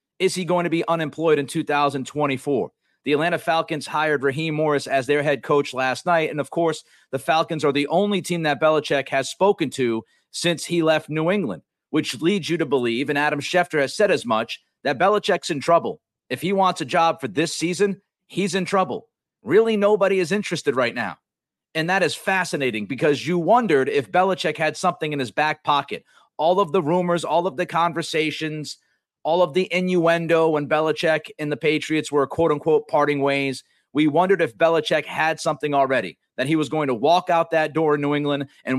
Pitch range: 145-175 Hz